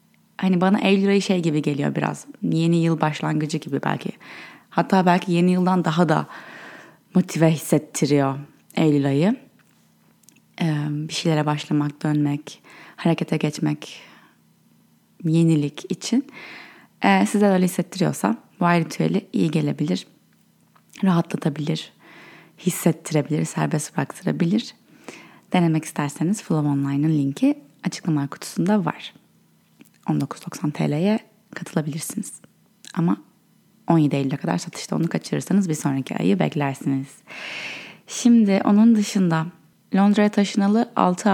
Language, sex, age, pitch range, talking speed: Turkish, female, 20-39, 155-200 Hz, 105 wpm